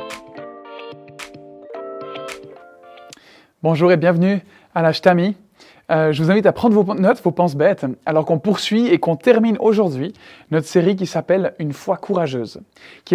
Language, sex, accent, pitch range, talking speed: French, male, French, 150-200 Hz, 135 wpm